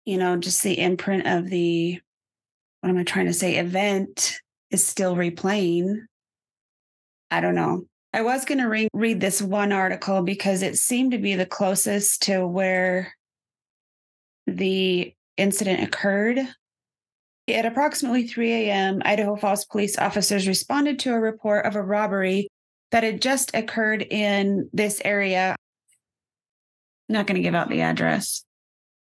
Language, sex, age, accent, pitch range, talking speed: English, female, 30-49, American, 195-225 Hz, 145 wpm